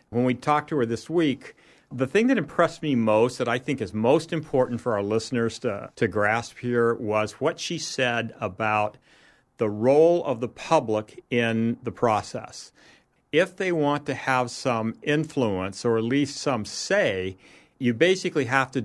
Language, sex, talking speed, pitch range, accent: English, male, 175 wpm, 110-145 Hz, American